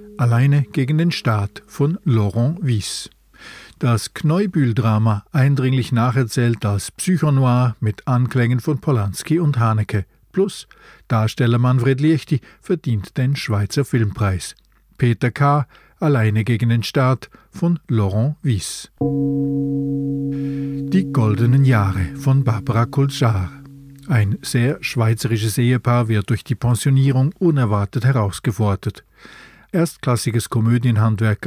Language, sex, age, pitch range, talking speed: German, male, 50-69, 115-155 Hz, 105 wpm